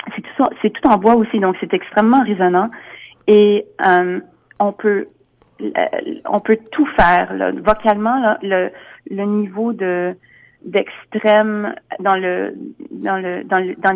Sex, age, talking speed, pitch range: female, 30-49, 150 wpm, 185-215 Hz